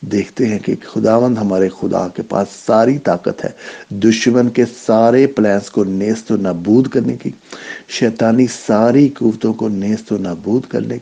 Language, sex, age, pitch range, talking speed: English, male, 50-69, 95-115 Hz, 150 wpm